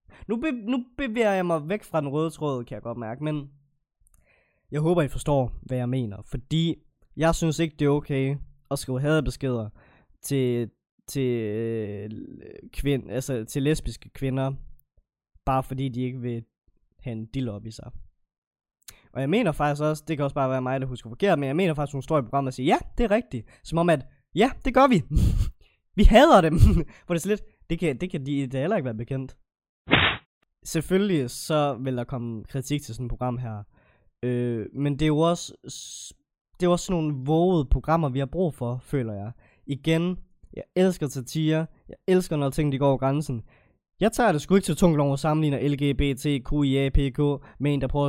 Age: 20-39